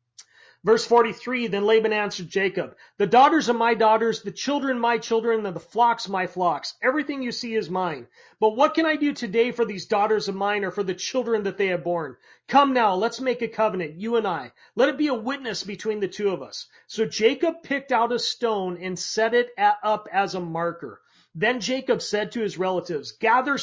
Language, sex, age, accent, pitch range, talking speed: English, male, 40-59, American, 185-240 Hz, 210 wpm